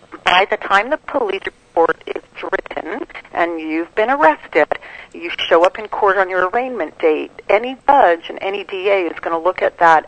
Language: English